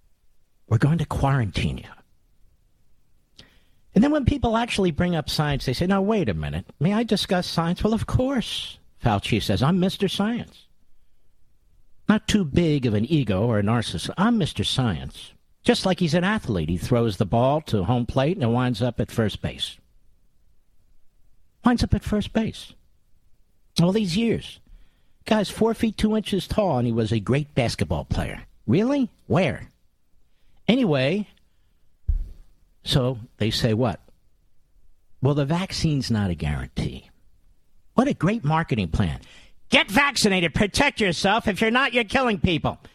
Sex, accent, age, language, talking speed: male, American, 50-69, English, 155 wpm